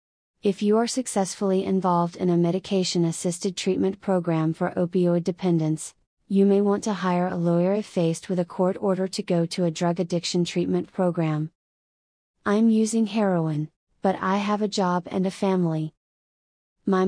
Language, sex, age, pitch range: English, female, 30-49, 175-200 Hz